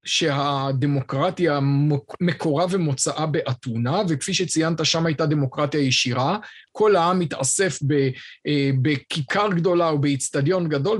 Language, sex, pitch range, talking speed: Hebrew, male, 145-185 Hz, 100 wpm